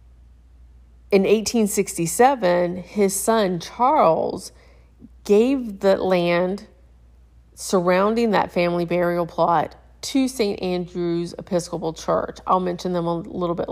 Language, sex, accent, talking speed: English, female, American, 105 wpm